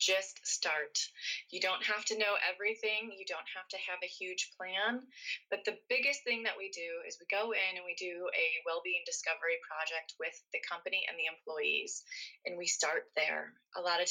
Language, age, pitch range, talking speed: English, 30-49, 185-265 Hz, 200 wpm